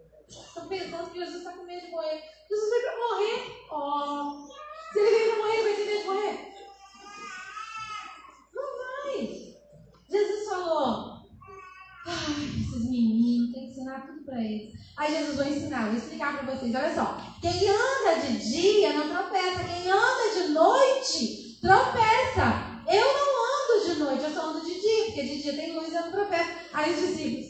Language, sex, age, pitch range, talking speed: Portuguese, female, 20-39, 280-395 Hz, 175 wpm